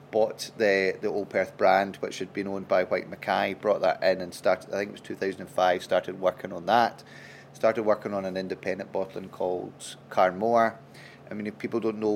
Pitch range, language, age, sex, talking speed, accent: 100-115 Hz, Hebrew, 30-49, male, 200 wpm, British